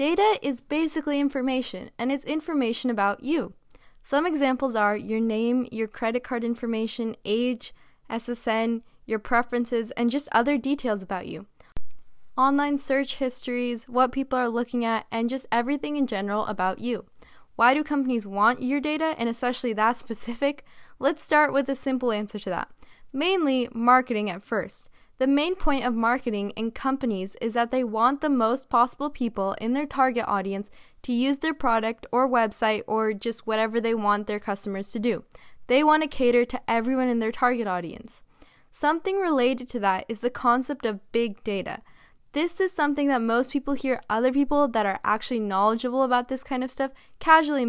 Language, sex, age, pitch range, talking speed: English, female, 10-29, 225-270 Hz, 175 wpm